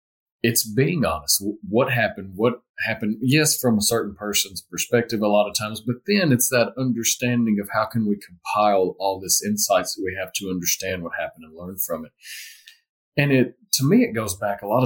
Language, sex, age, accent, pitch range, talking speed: English, male, 30-49, American, 95-130 Hz, 200 wpm